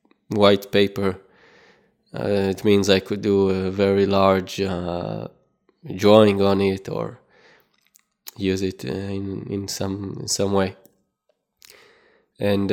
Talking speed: 115 wpm